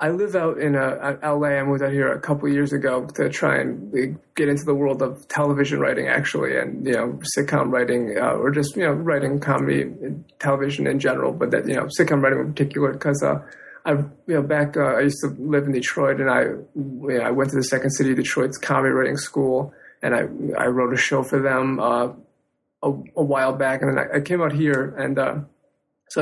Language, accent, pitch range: English, American, 135-145 Hz